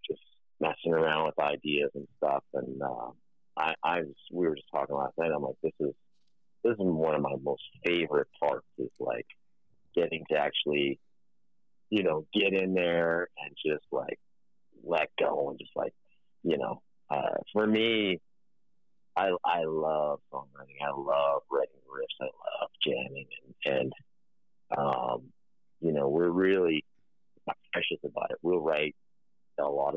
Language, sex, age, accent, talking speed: English, male, 40-59, American, 155 wpm